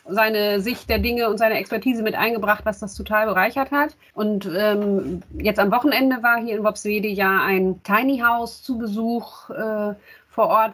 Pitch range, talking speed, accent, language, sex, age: 195-225 Hz, 180 wpm, German, German, female, 30-49